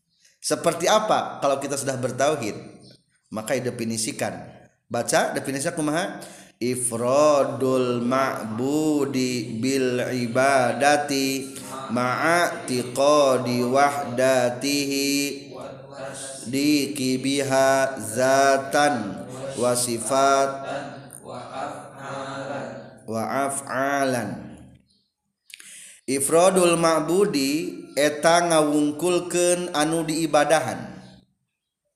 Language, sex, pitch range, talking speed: Indonesian, male, 130-165 Hz, 50 wpm